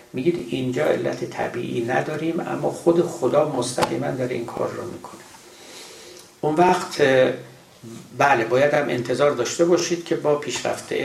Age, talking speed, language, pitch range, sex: 60-79, 130 wpm, Persian, 130-175 Hz, male